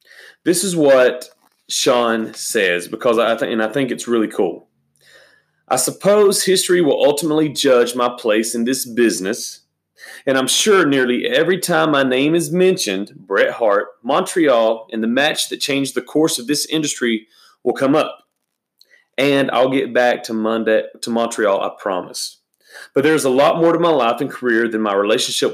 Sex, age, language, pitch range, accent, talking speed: male, 30-49, English, 125-180 Hz, American, 165 wpm